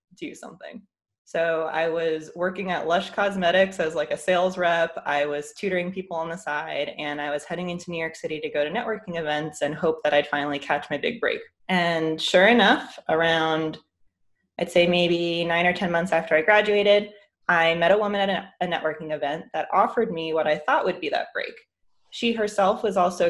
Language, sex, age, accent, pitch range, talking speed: English, female, 20-39, American, 155-195 Hz, 205 wpm